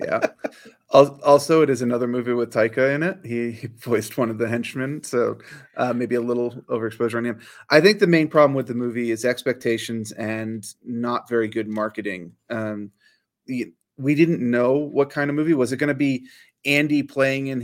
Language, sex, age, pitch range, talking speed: English, male, 30-49, 115-140 Hz, 195 wpm